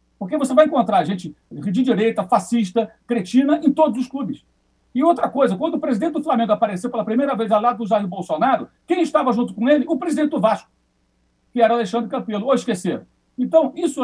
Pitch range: 215-275 Hz